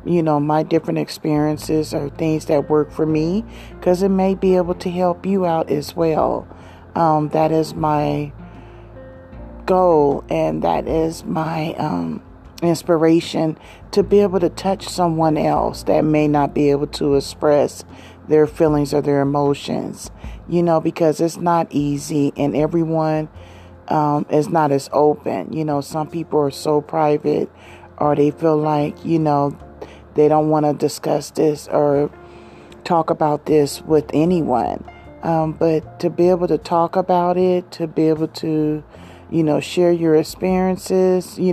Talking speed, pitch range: 155 wpm, 145-170 Hz